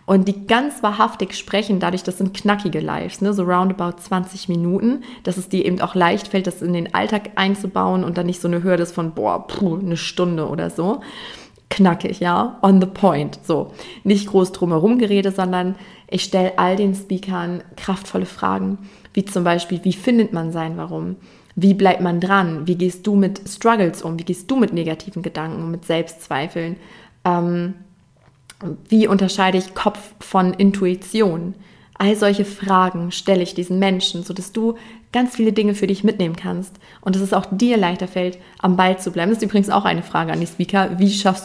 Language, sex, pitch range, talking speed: German, female, 175-195 Hz, 190 wpm